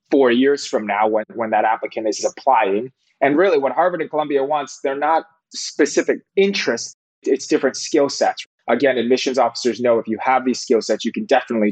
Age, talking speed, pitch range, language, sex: 20-39, 195 wpm, 110-135 Hz, English, male